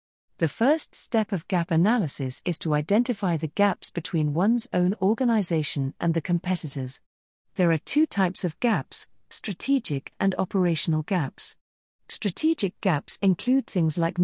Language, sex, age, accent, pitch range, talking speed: English, female, 40-59, British, 150-210 Hz, 140 wpm